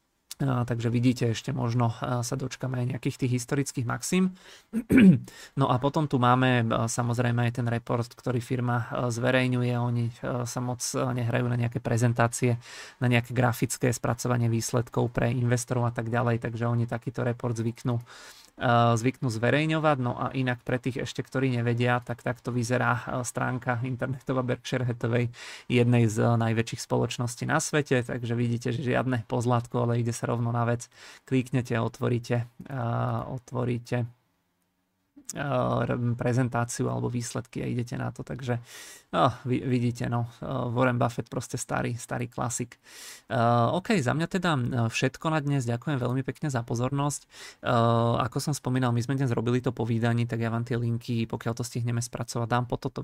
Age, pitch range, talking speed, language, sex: 30-49, 115-130 Hz, 155 wpm, Czech, male